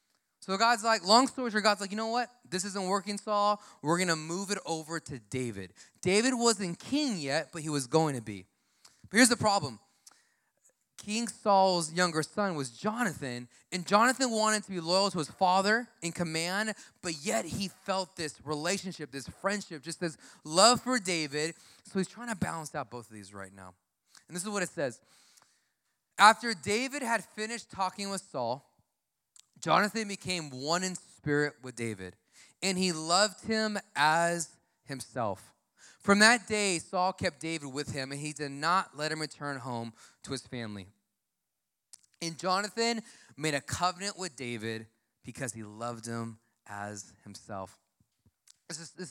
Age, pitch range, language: 20-39, 135-200 Hz, English